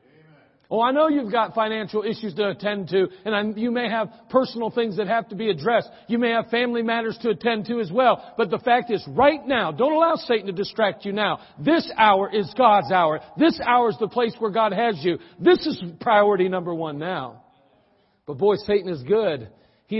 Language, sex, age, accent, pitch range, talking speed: English, male, 50-69, American, 175-230 Hz, 210 wpm